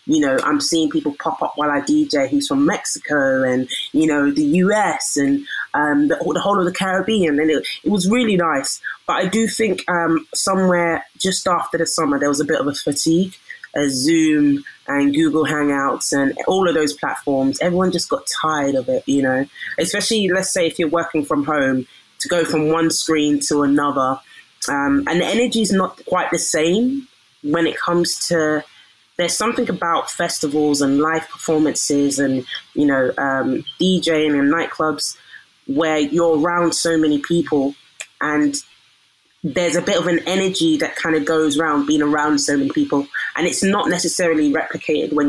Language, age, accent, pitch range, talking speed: English, 20-39, British, 145-180 Hz, 185 wpm